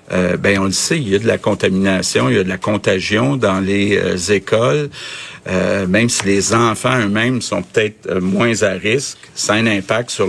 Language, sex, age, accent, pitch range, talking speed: French, male, 50-69, Canadian, 95-120 Hz, 220 wpm